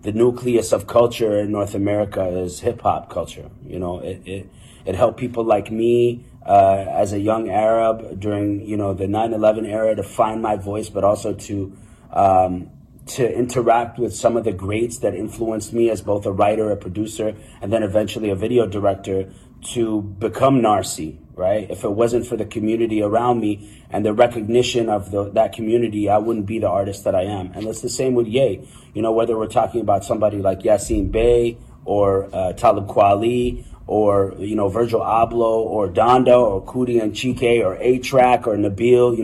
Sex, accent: male, American